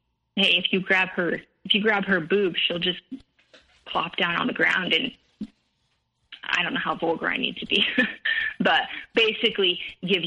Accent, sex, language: American, female, English